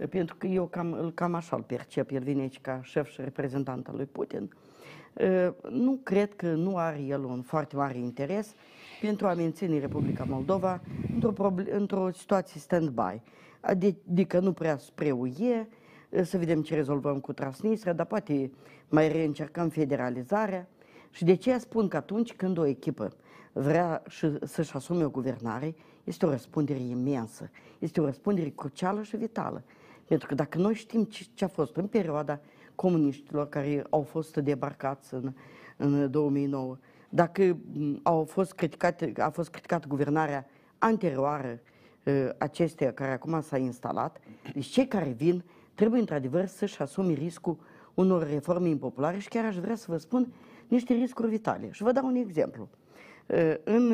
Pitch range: 140-190 Hz